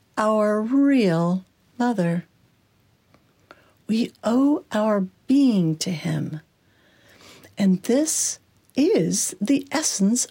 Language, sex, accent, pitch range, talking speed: English, female, American, 175-255 Hz, 80 wpm